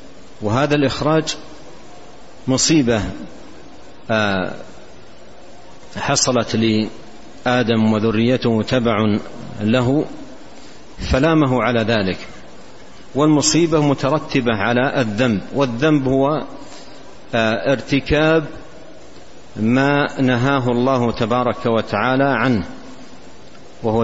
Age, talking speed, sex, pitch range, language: 50-69, 60 wpm, male, 115-130 Hz, Arabic